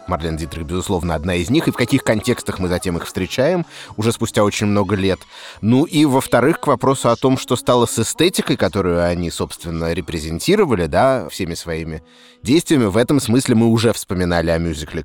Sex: male